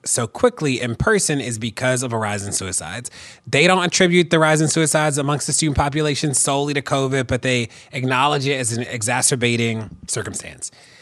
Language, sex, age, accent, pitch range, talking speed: English, male, 30-49, American, 120-155 Hz, 180 wpm